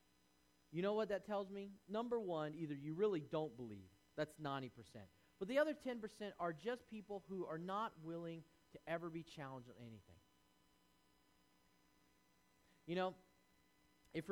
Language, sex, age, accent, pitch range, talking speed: English, male, 40-59, American, 130-185 Hz, 145 wpm